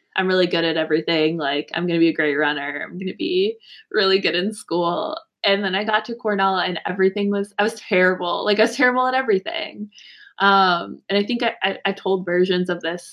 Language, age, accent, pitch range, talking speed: English, 20-39, American, 165-200 Hz, 230 wpm